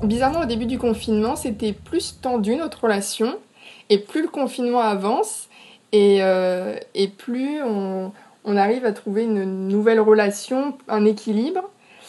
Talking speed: 145 wpm